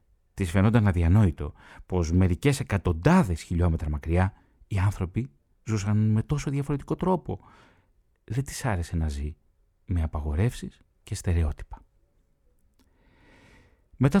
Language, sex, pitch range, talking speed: Greek, male, 90-115 Hz, 105 wpm